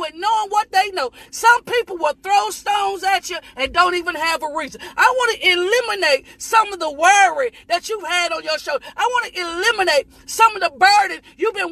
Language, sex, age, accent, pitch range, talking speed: English, female, 40-59, American, 340-435 Hz, 220 wpm